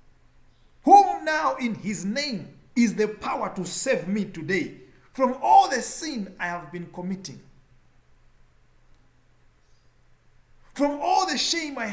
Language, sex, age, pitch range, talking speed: English, male, 50-69, 155-250 Hz, 125 wpm